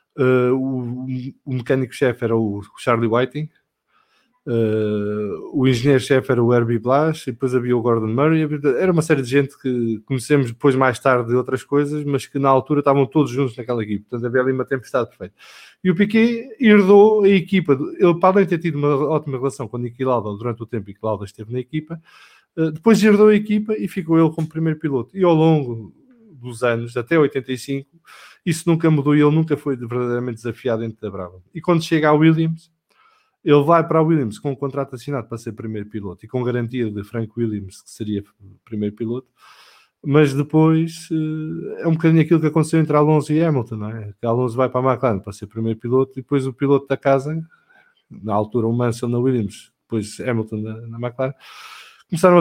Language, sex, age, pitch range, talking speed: English, male, 20-39, 120-160 Hz, 195 wpm